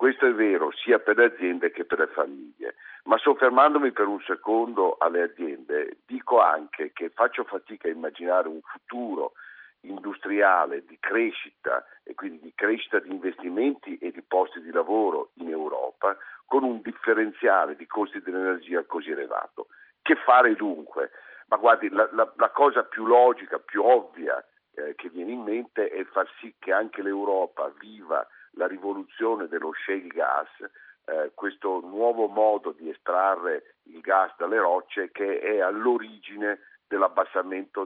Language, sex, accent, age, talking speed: Italian, male, native, 50-69, 150 wpm